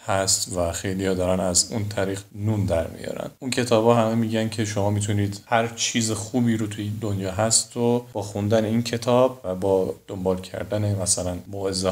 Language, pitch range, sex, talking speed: Persian, 105-125 Hz, male, 175 wpm